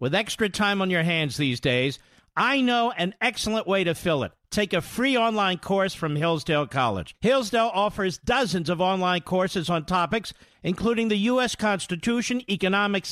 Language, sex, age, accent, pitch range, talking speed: English, male, 50-69, American, 175-235 Hz, 170 wpm